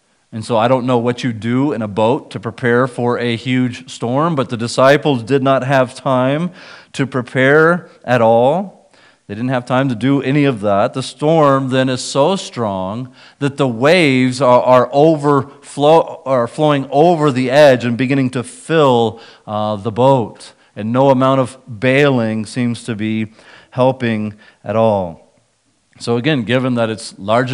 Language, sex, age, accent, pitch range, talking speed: English, male, 40-59, American, 120-145 Hz, 165 wpm